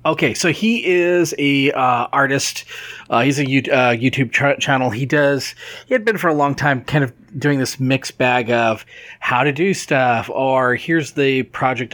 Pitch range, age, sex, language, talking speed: 120-150 Hz, 30-49, male, English, 195 wpm